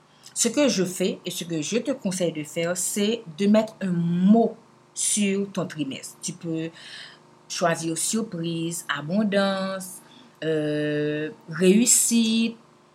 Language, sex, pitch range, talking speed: French, female, 175-235 Hz, 120 wpm